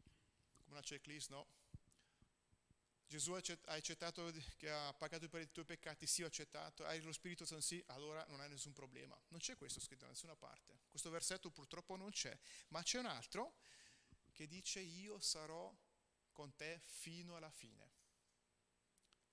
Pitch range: 130-175 Hz